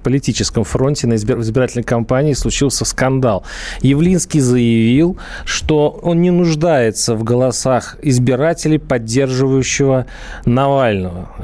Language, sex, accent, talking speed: Russian, male, native, 95 wpm